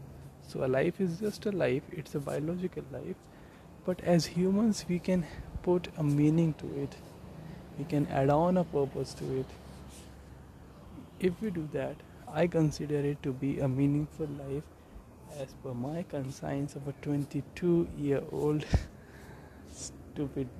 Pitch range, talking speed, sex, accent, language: 125-155 Hz, 150 wpm, male, native, Hindi